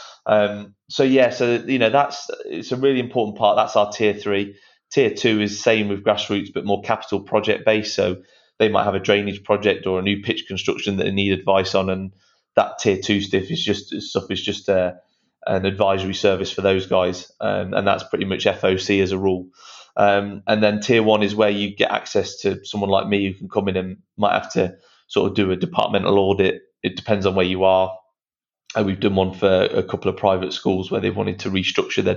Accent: British